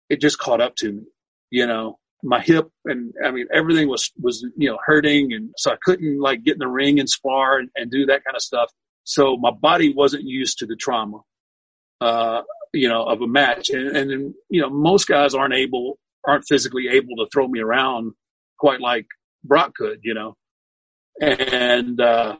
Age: 40-59